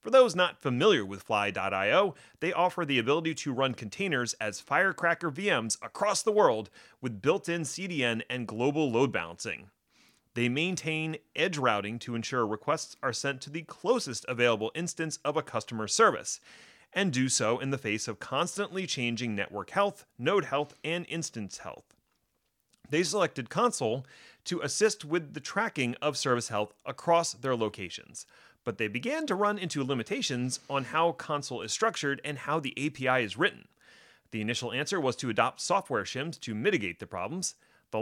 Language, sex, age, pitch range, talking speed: English, male, 30-49, 120-170 Hz, 165 wpm